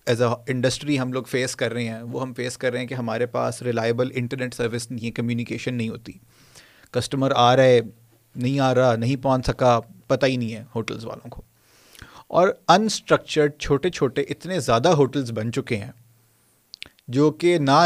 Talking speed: 185 wpm